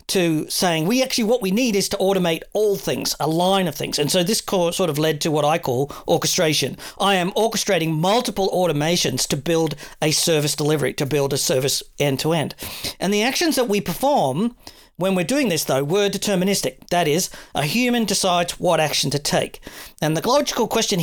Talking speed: 195 wpm